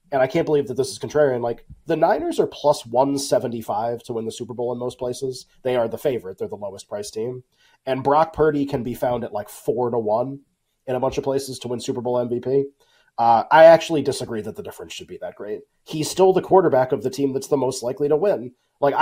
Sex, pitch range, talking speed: male, 140-210 Hz, 245 wpm